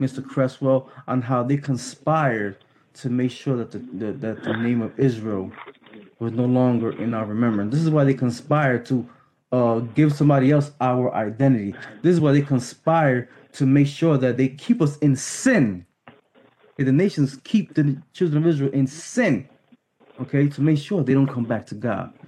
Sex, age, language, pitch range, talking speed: male, 20-39, English, 125-170 Hz, 185 wpm